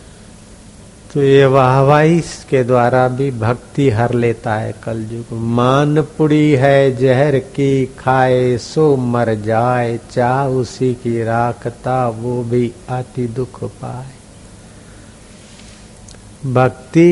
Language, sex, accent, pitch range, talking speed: Hindi, male, native, 110-145 Hz, 105 wpm